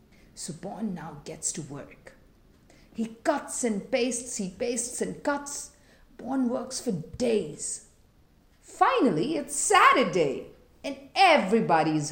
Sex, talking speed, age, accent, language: female, 115 wpm, 50-69, Indian, English